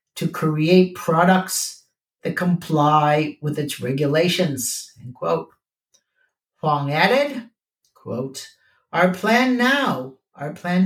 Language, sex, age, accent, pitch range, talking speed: English, male, 60-79, American, 155-215 Hz, 95 wpm